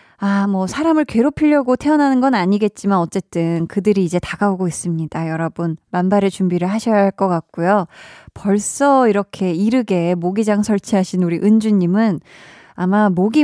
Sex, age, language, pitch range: female, 20-39, Korean, 185-250 Hz